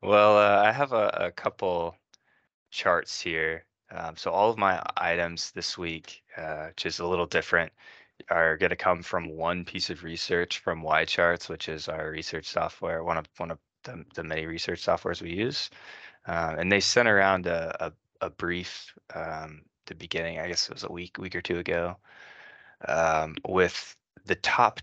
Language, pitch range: English, 85-90 Hz